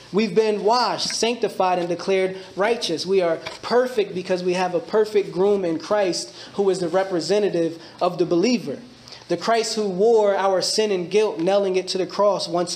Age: 20-39